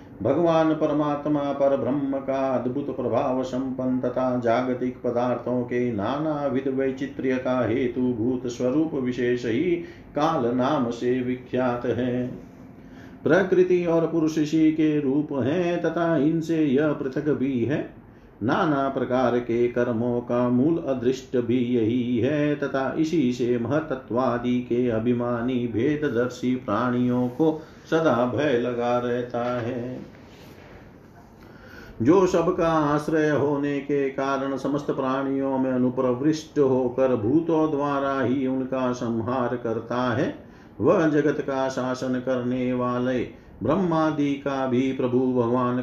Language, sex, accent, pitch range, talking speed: Hindi, male, native, 125-145 Hz, 115 wpm